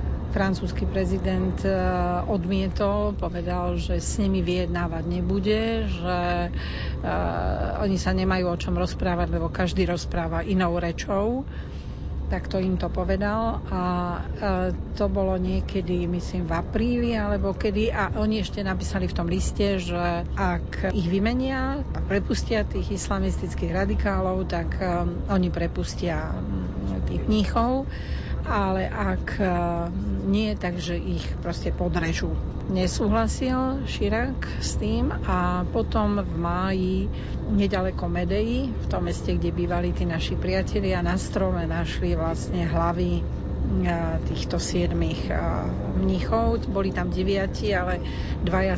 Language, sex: Slovak, female